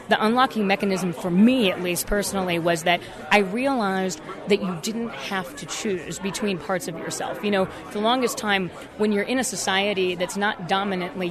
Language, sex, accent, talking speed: English, female, American, 190 wpm